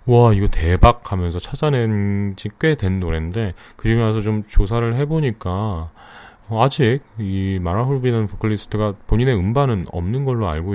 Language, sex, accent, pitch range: Korean, male, native, 85-120 Hz